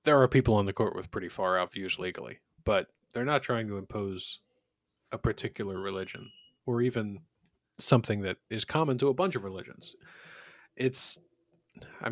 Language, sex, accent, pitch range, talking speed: English, male, American, 100-125 Hz, 170 wpm